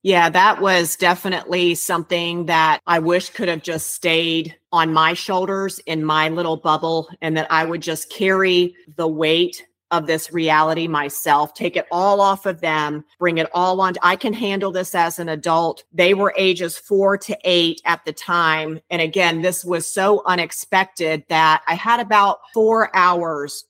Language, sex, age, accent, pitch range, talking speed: English, female, 40-59, American, 160-185 Hz, 175 wpm